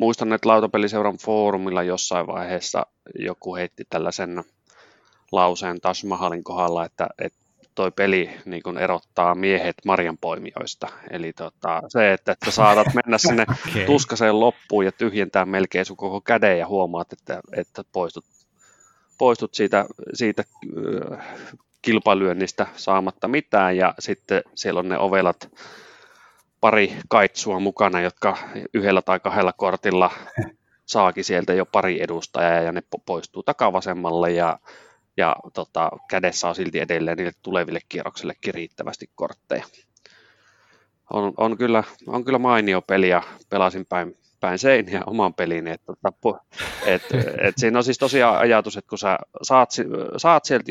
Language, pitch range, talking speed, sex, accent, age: Finnish, 90-110 Hz, 135 wpm, male, native, 30-49